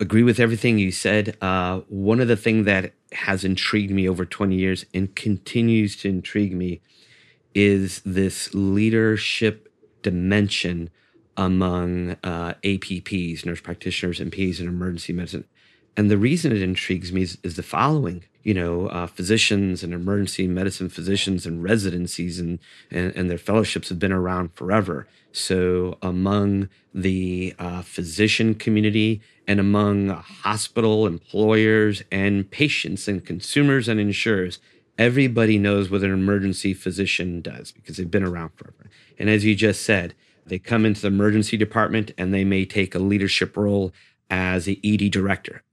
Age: 30-49